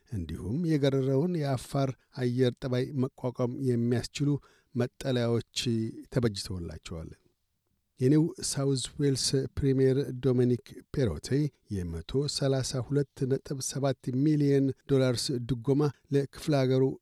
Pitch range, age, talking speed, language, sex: 120-140 Hz, 60-79, 60 wpm, Amharic, male